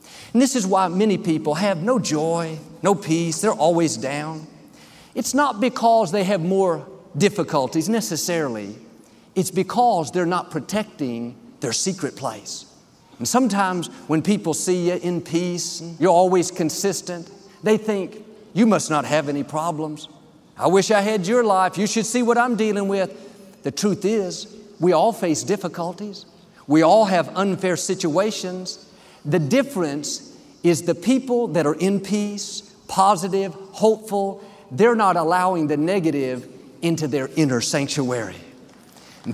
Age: 50-69